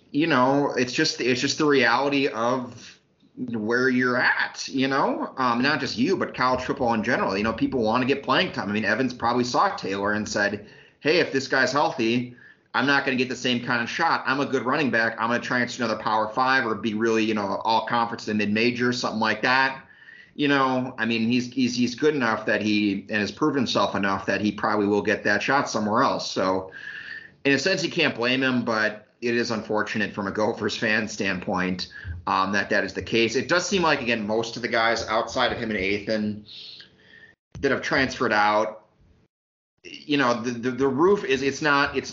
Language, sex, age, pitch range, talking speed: English, male, 30-49, 105-130 Hz, 220 wpm